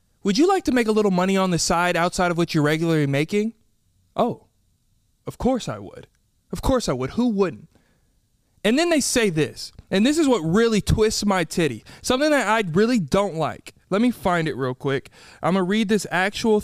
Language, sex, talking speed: English, male, 215 wpm